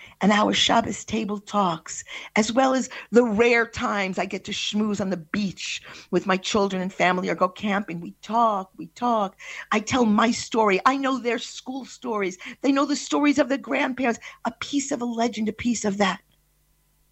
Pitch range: 185-270 Hz